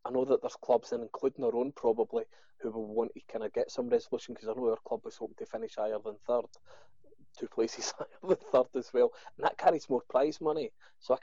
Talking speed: 240 wpm